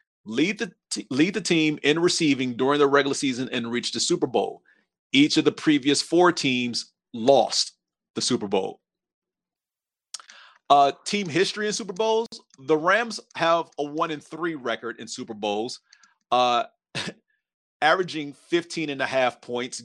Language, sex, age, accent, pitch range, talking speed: English, male, 40-59, American, 115-160 Hz, 155 wpm